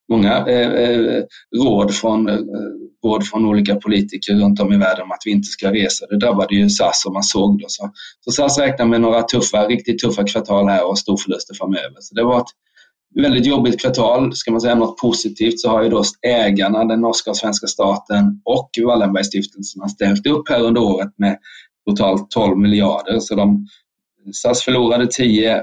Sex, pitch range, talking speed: male, 100-120 Hz, 190 wpm